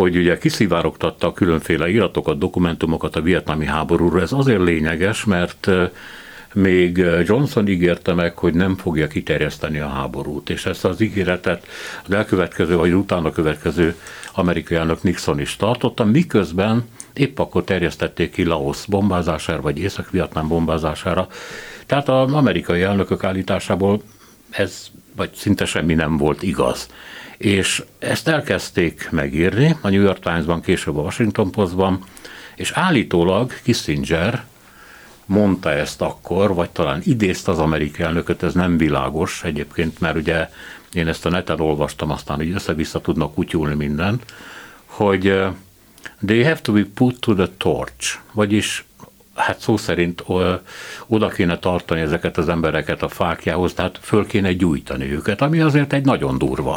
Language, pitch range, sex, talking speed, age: Hungarian, 85-100 Hz, male, 140 wpm, 60-79